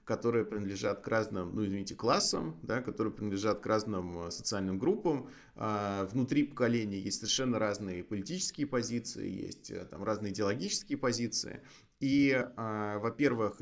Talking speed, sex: 120 wpm, male